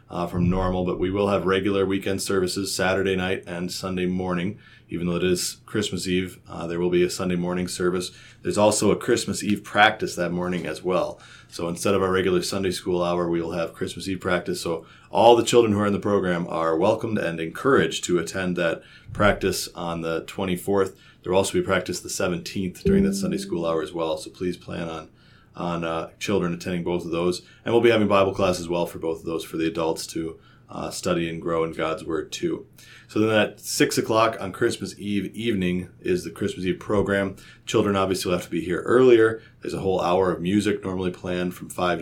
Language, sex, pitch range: English, male, 85-100 Hz